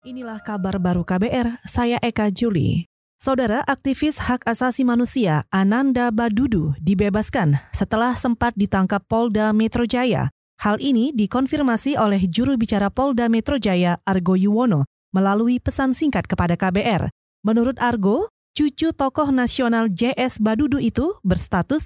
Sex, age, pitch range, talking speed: female, 20-39, 210-260 Hz, 125 wpm